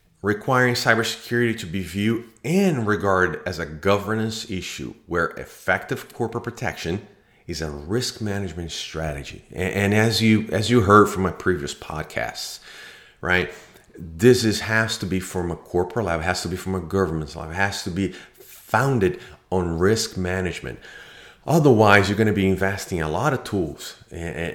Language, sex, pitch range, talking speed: English, male, 90-115 Hz, 165 wpm